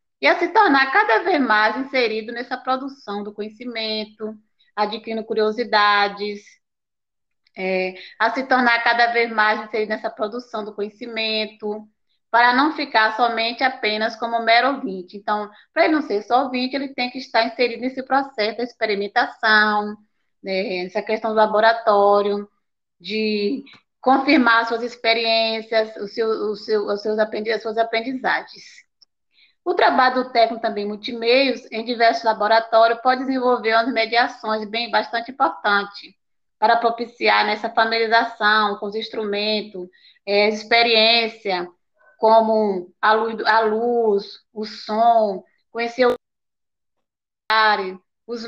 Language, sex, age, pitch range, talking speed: Portuguese, female, 20-39, 210-240 Hz, 130 wpm